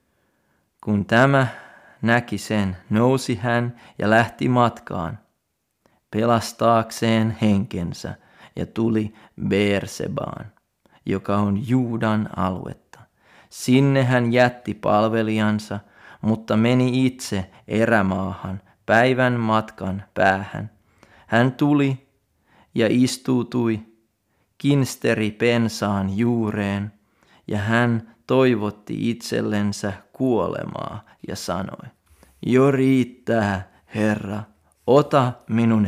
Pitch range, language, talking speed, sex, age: 100-120 Hz, Finnish, 80 wpm, male, 30-49